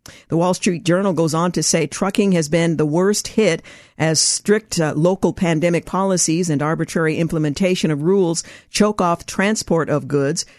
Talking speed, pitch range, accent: 170 wpm, 155-195 Hz, American